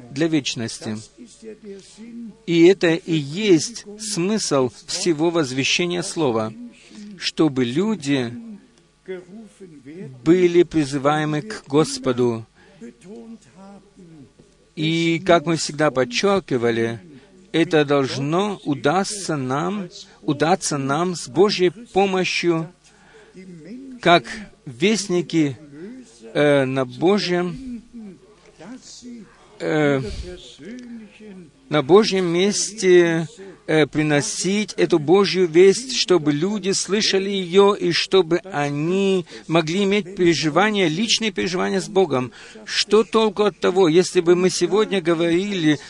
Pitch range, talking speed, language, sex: 155-200 Hz, 90 wpm, Russian, male